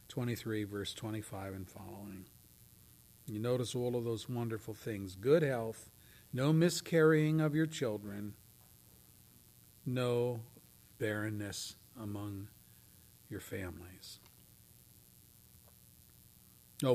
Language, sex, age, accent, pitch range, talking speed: English, male, 50-69, American, 110-160 Hz, 90 wpm